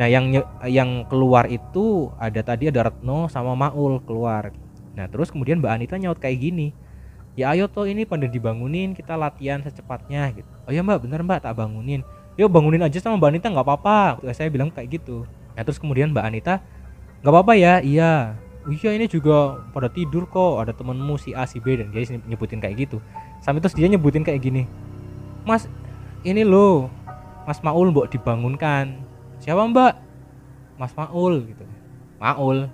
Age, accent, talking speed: 20-39, native, 175 wpm